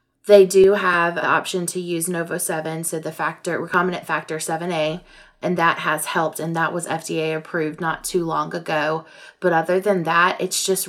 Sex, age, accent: female, 20-39, American